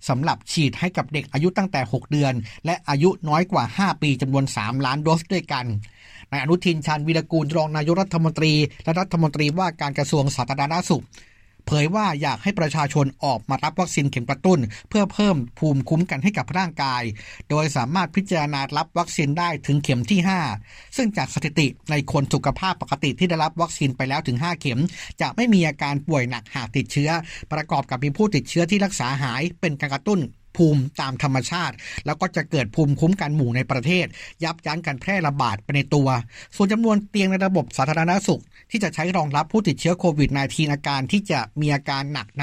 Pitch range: 140-175 Hz